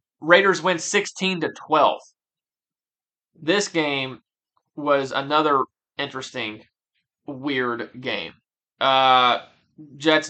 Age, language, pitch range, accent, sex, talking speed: 20-39, English, 130-165 Hz, American, male, 75 wpm